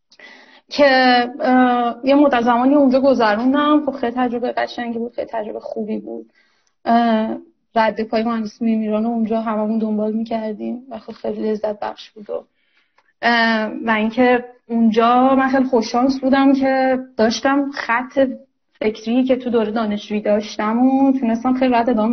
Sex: female